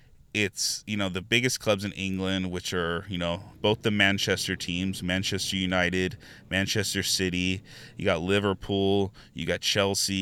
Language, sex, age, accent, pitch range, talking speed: English, male, 20-39, American, 95-105 Hz, 155 wpm